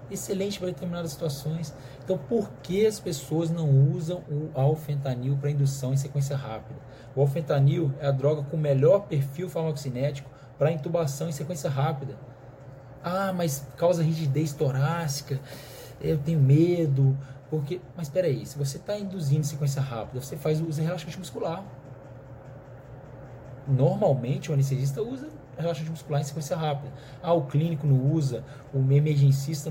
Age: 20-39